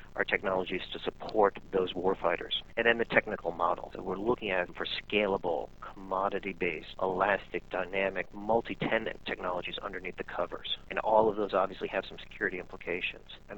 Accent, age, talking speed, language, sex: American, 40-59, 160 wpm, English, male